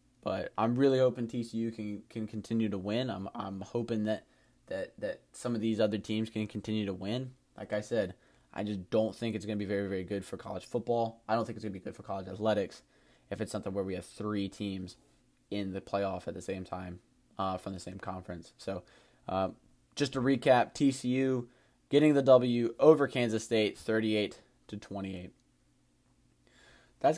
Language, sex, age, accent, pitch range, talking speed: English, male, 20-39, American, 100-120 Hz, 210 wpm